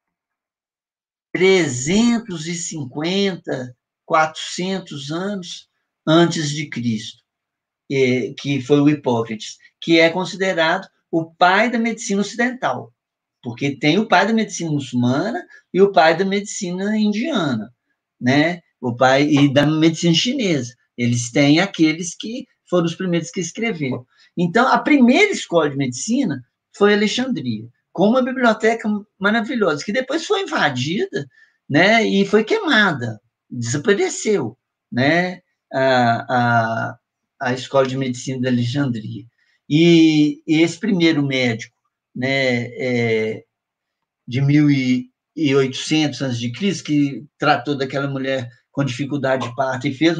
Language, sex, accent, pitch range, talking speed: Portuguese, male, Brazilian, 130-195 Hz, 115 wpm